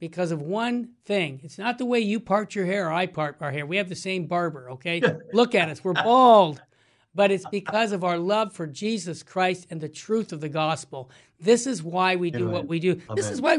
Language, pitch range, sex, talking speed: English, 165-235 Hz, male, 240 wpm